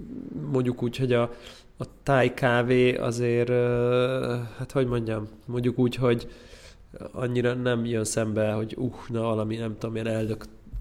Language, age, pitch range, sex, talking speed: Hungarian, 20-39, 115-125 Hz, male, 135 wpm